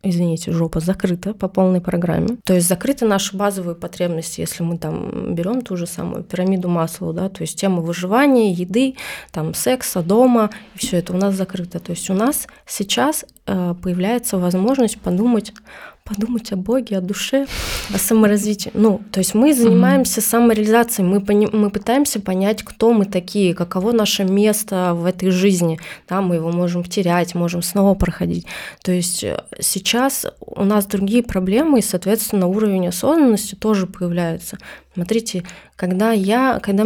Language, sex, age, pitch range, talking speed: Russian, female, 20-39, 180-220 Hz, 155 wpm